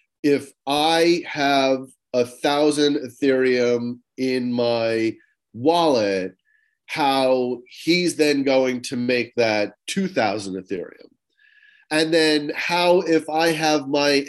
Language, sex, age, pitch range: English, male, 40-59, 130-160 Hz